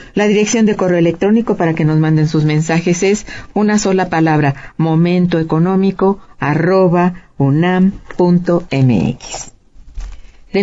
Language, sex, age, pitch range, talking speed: Spanish, female, 50-69, 155-185 Hz, 100 wpm